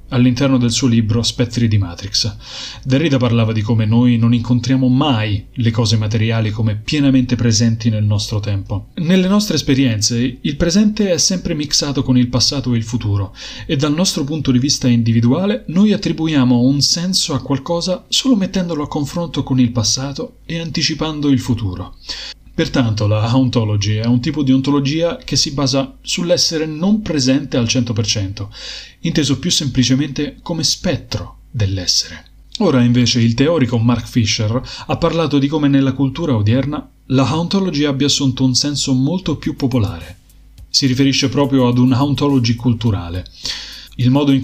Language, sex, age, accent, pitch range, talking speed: Italian, male, 30-49, native, 115-145 Hz, 155 wpm